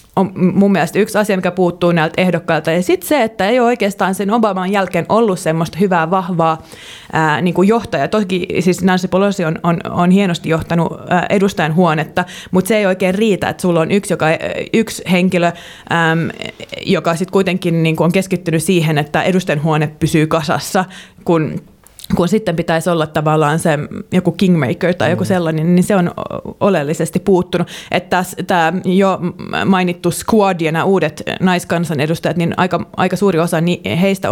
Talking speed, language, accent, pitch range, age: 165 wpm, Finnish, native, 165-190 Hz, 20-39